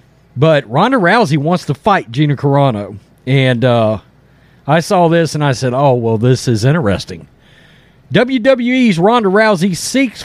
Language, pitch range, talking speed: English, 150-195 Hz, 145 wpm